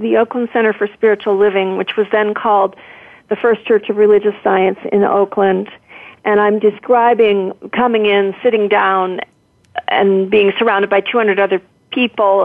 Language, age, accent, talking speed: English, 40-59, American, 155 wpm